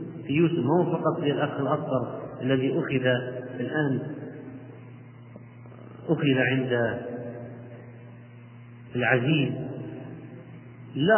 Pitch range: 125-175 Hz